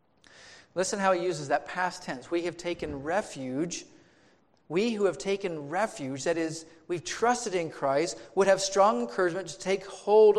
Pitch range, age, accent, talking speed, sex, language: 160-205 Hz, 40-59, American, 165 wpm, male, English